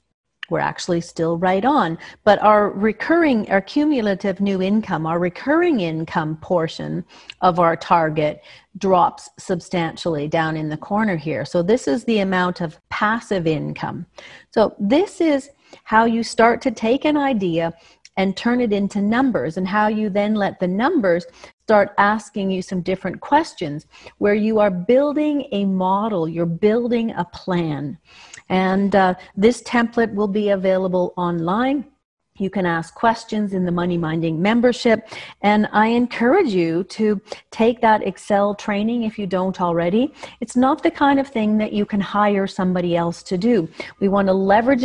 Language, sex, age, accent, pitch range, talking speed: English, female, 40-59, American, 180-230 Hz, 160 wpm